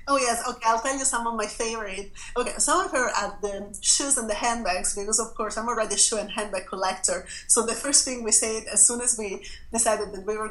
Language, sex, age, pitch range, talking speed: English, female, 30-49, 200-235 Hz, 250 wpm